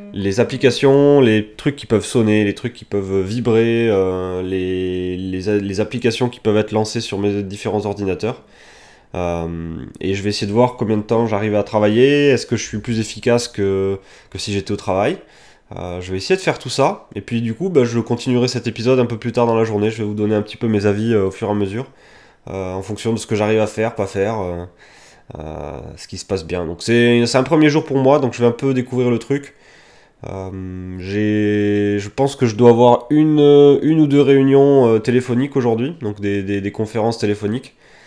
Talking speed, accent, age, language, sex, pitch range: 225 wpm, French, 20-39, French, male, 100-120 Hz